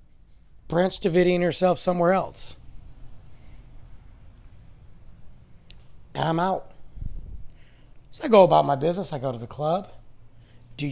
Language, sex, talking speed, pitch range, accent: English, male, 110 wpm, 120-185 Hz, American